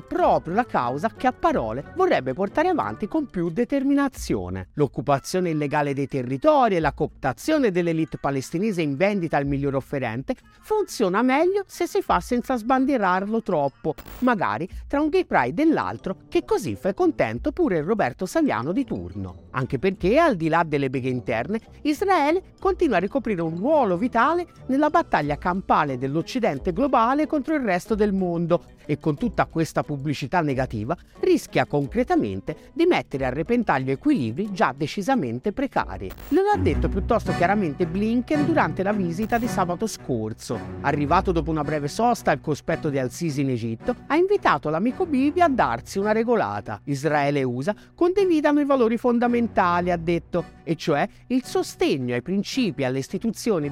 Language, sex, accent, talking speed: Italian, male, native, 155 wpm